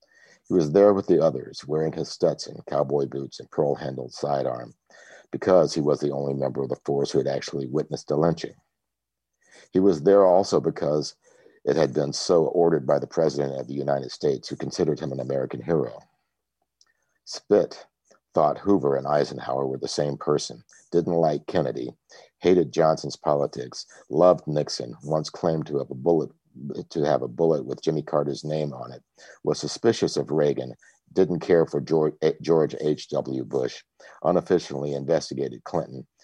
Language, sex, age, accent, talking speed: English, male, 50-69, American, 160 wpm